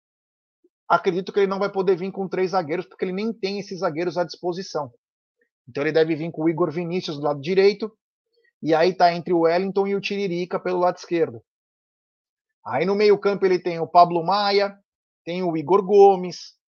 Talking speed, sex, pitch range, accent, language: 195 wpm, male, 170-230 Hz, Brazilian, Portuguese